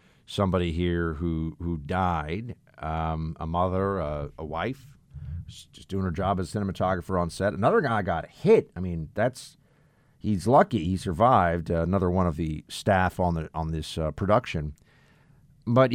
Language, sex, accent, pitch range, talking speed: English, male, American, 90-125 Hz, 160 wpm